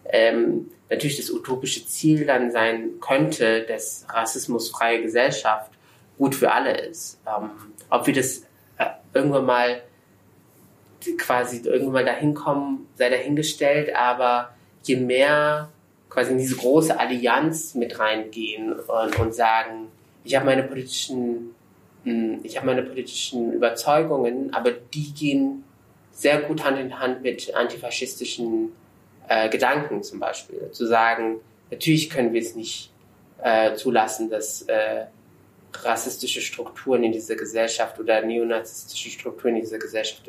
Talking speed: 125 wpm